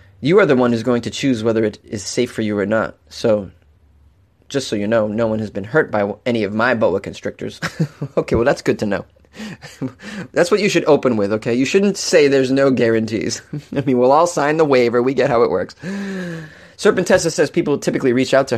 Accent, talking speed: American, 225 wpm